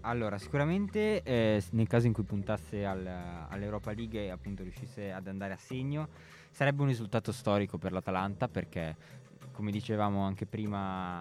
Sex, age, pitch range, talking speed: male, 20-39, 95-115 Hz, 150 wpm